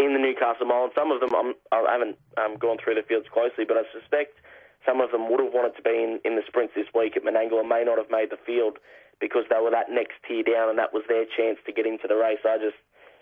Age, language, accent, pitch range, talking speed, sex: 20-39, English, Australian, 110-130 Hz, 280 wpm, male